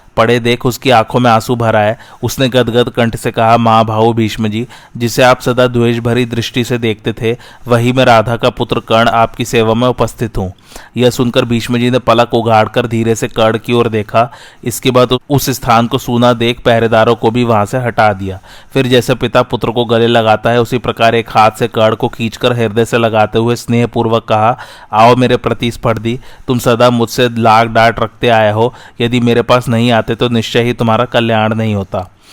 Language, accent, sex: Hindi, native, male